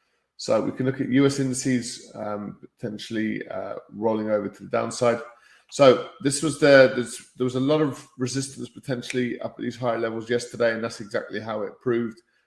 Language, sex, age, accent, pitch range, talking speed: English, male, 20-39, British, 105-125 Hz, 185 wpm